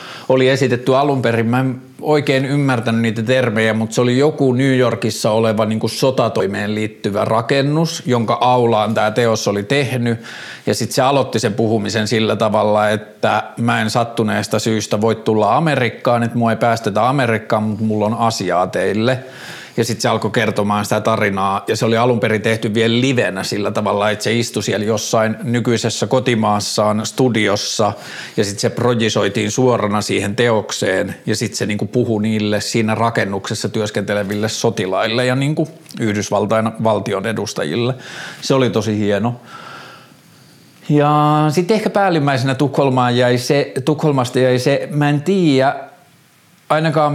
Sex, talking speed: male, 145 wpm